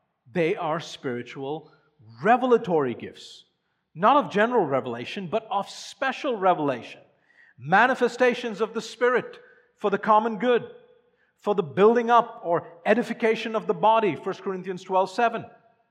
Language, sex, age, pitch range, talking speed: English, male, 50-69, 160-210 Hz, 130 wpm